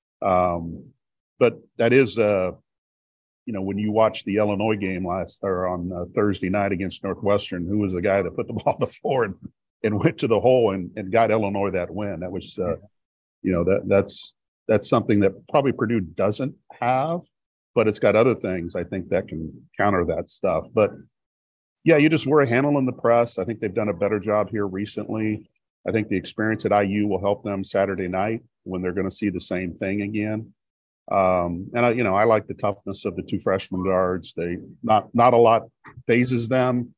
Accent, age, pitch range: American, 40-59, 90-115 Hz